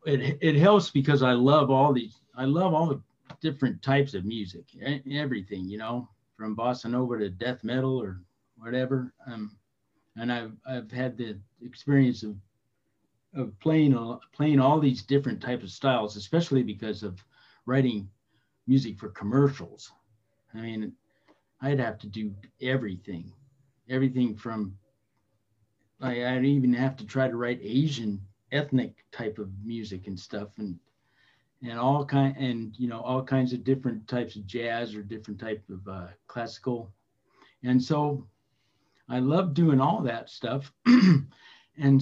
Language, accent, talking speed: English, American, 150 wpm